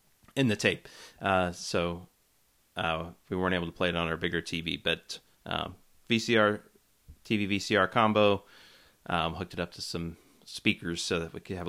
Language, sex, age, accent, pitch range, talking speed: English, male, 30-49, American, 90-105 Hz, 175 wpm